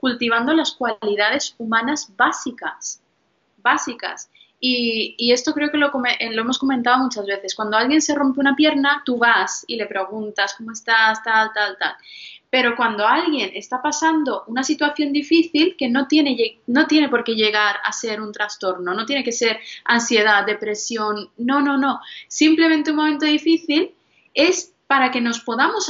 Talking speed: 160 wpm